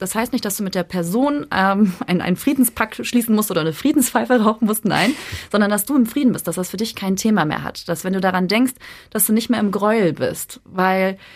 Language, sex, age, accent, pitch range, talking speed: German, female, 30-49, German, 185-235 Hz, 250 wpm